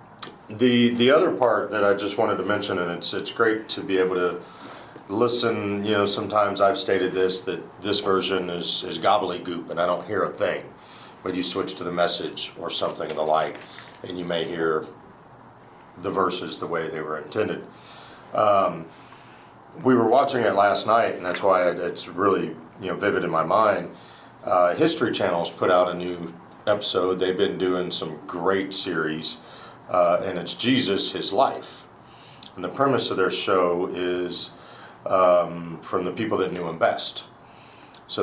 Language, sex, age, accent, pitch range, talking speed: English, male, 40-59, American, 85-95 Hz, 180 wpm